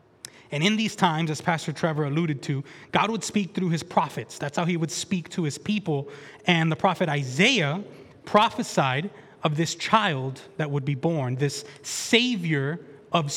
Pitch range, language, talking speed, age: 140-190 Hz, English, 170 wpm, 20-39